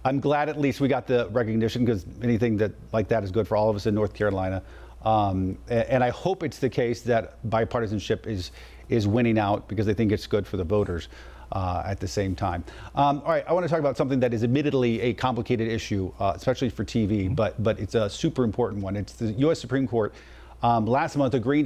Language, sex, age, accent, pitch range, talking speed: English, male, 40-59, American, 105-135 Hz, 230 wpm